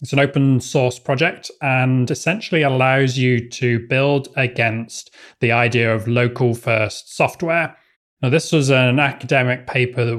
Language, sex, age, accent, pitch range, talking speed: English, male, 20-39, British, 120-140 Hz, 145 wpm